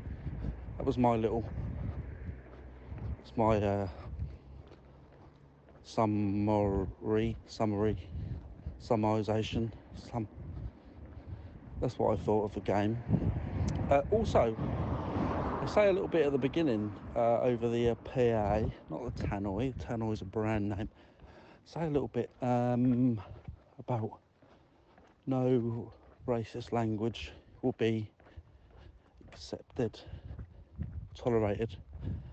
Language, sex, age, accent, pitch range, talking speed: English, male, 50-69, British, 90-115 Hz, 95 wpm